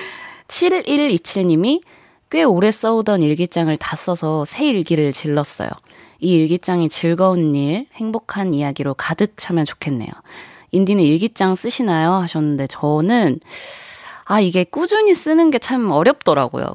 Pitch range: 160-235 Hz